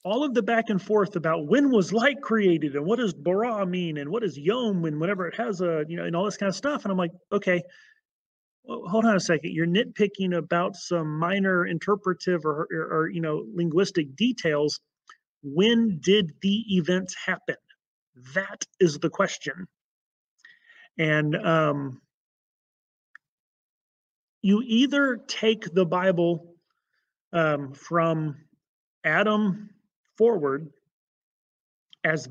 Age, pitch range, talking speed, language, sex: 30-49, 165-205 Hz, 140 wpm, English, male